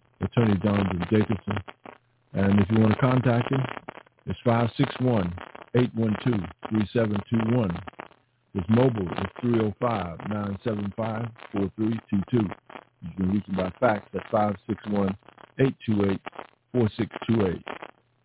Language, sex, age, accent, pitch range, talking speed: English, male, 50-69, American, 100-120 Hz, 80 wpm